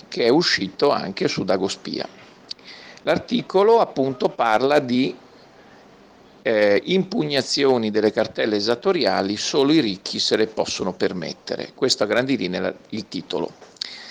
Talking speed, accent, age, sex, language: 110 wpm, native, 50-69, male, Italian